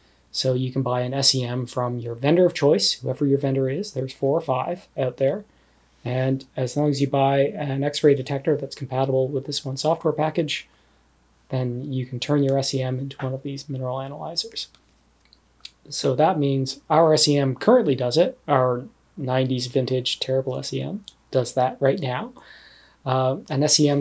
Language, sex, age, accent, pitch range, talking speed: English, male, 30-49, American, 130-145 Hz, 170 wpm